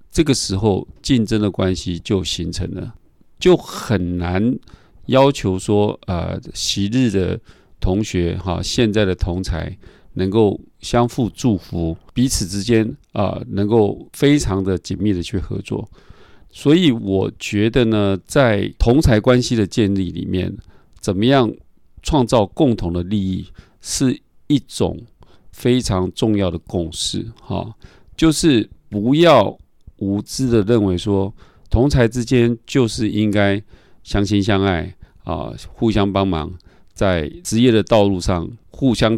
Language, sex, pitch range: Chinese, male, 90-115 Hz